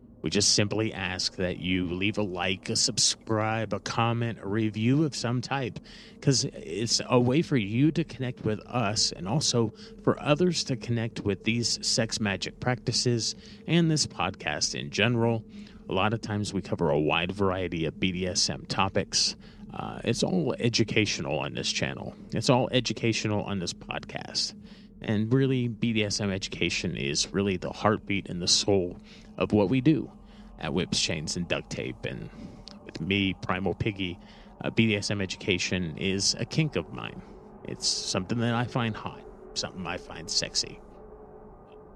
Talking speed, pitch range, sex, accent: 160 wpm, 95-125 Hz, male, American